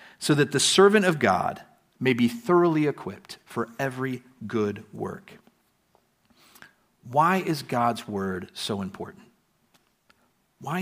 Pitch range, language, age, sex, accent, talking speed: 115-165 Hz, English, 50-69, male, American, 115 wpm